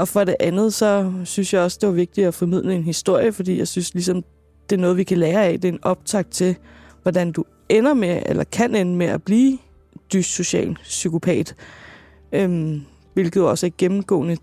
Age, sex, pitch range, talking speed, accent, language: 20-39, female, 170-195 Hz, 205 wpm, native, Danish